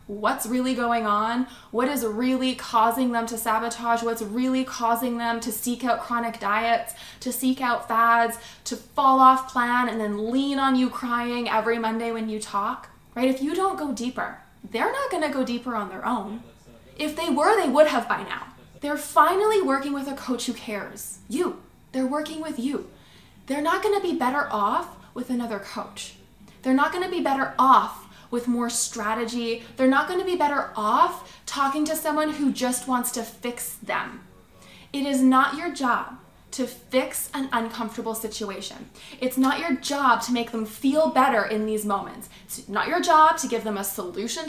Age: 20-39